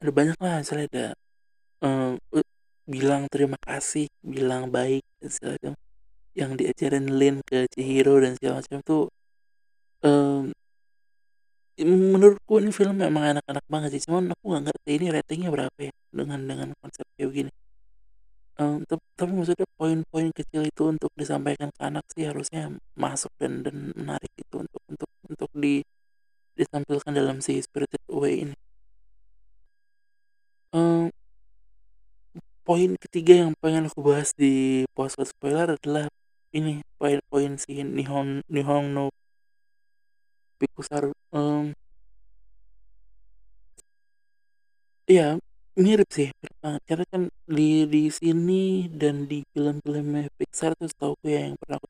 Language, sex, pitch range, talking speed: Indonesian, male, 140-190 Hz, 125 wpm